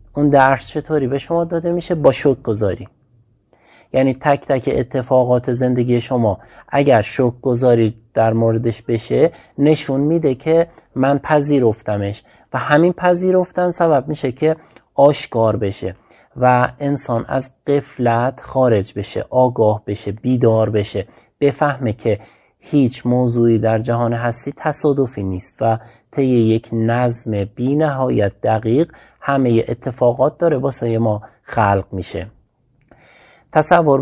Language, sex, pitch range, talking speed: Persian, male, 110-140 Hz, 120 wpm